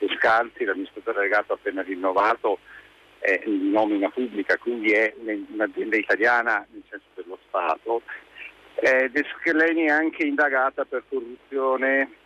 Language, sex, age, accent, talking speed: Italian, male, 50-69, native, 115 wpm